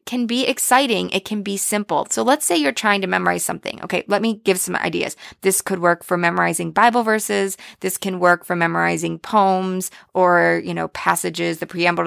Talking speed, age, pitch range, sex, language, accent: 200 wpm, 20-39, 185-235 Hz, female, English, American